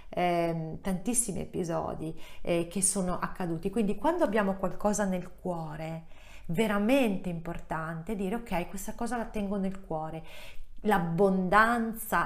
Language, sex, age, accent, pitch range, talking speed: Italian, female, 40-59, native, 170-210 Hz, 120 wpm